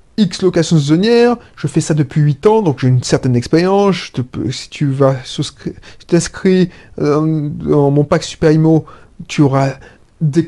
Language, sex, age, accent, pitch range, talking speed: French, male, 30-49, French, 140-190 Hz, 160 wpm